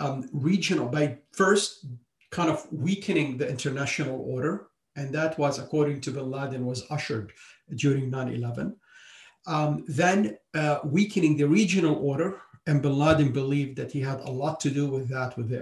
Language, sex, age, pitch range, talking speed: English, male, 50-69, 130-155 Hz, 165 wpm